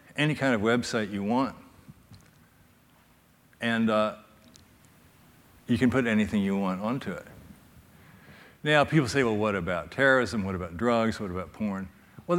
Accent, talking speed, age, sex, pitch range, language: American, 145 wpm, 60-79, male, 105-145 Hz, English